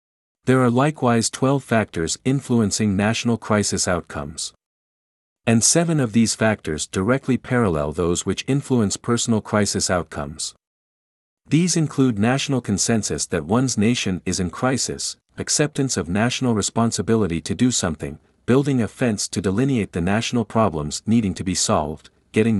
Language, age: Spanish, 50-69